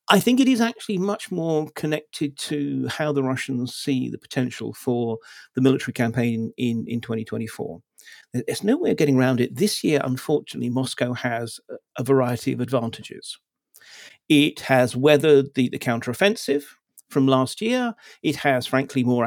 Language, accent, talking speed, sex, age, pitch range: English, British, 160 wpm, male, 50-69, 125-155 Hz